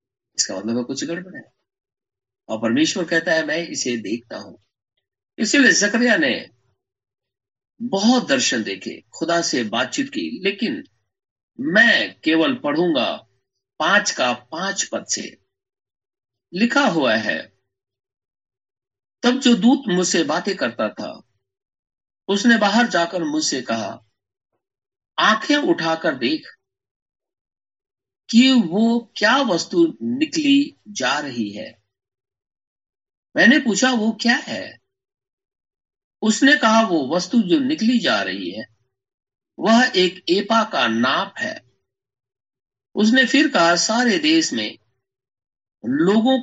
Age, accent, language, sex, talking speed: 50-69, native, Hindi, male, 110 wpm